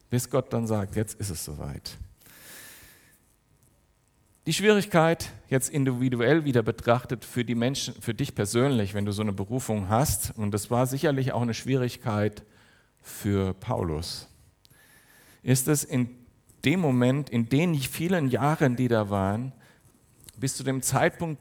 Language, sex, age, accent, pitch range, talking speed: German, male, 50-69, German, 110-140 Hz, 145 wpm